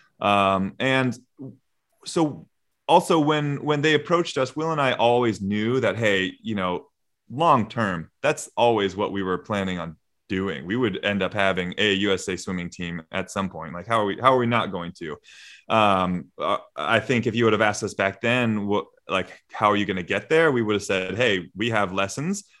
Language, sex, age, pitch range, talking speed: English, male, 20-39, 95-125 Hz, 205 wpm